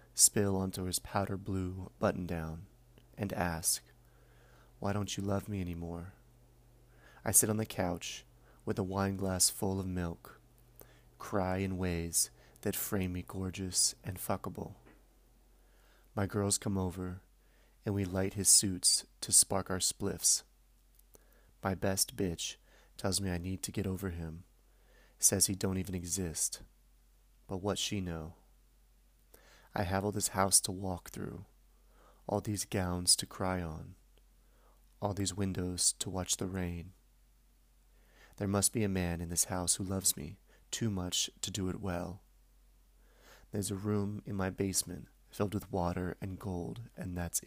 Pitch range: 85-100 Hz